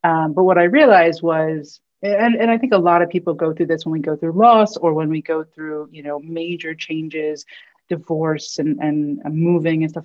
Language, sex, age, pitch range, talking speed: English, female, 30-49, 155-185 Hz, 220 wpm